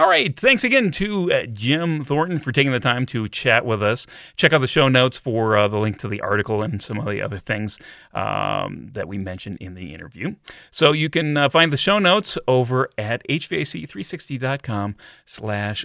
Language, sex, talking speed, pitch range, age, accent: English, male, 200 wpm, 100-135 Hz, 30-49, American